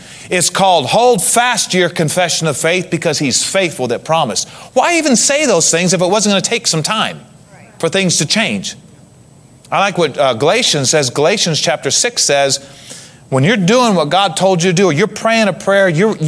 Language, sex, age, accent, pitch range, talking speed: English, male, 30-49, American, 165-245 Hz, 205 wpm